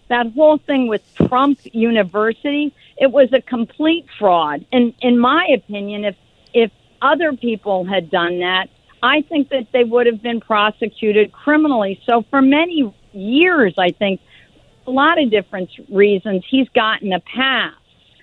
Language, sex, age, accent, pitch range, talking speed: English, female, 50-69, American, 210-280 Hz, 150 wpm